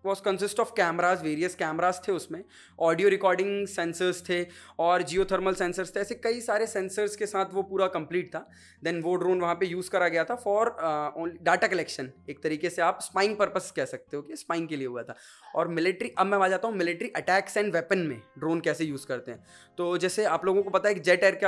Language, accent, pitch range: English, Indian, 155-195 Hz